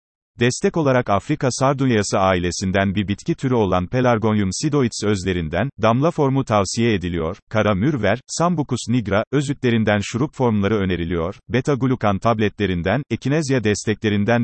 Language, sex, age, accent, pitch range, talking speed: Turkish, male, 40-59, native, 100-135 Hz, 120 wpm